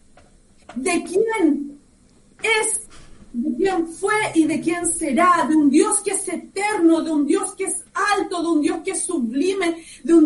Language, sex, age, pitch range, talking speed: Spanish, female, 40-59, 310-390 Hz, 175 wpm